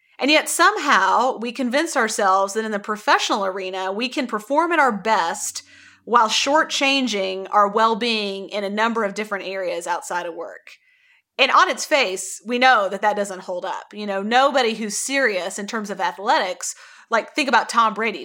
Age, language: 30-49, English